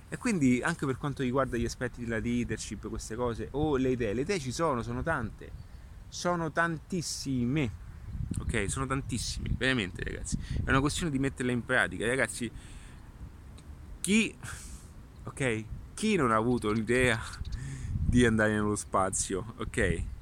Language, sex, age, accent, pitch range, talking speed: Italian, male, 30-49, native, 100-135 Hz, 145 wpm